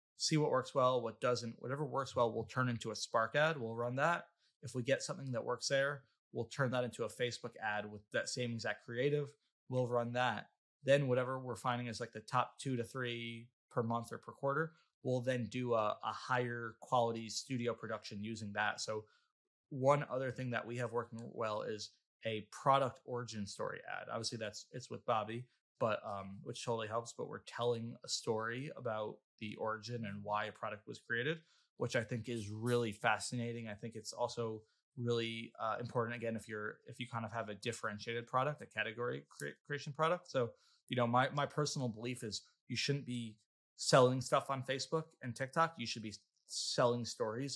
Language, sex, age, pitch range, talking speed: English, male, 20-39, 115-130 Hz, 195 wpm